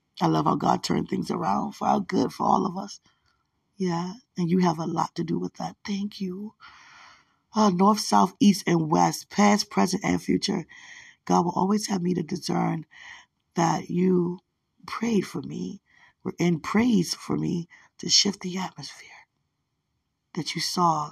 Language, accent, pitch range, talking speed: English, American, 175-215 Hz, 170 wpm